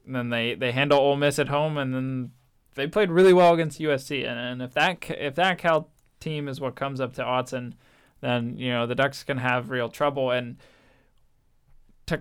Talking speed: 205 wpm